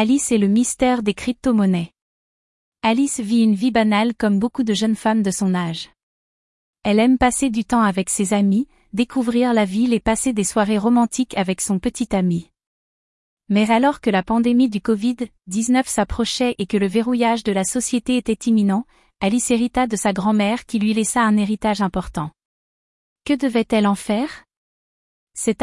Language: French